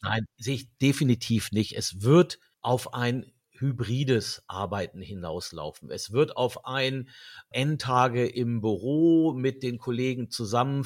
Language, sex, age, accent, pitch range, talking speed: German, male, 50-69, German, 115-140 Hz, 125 wpm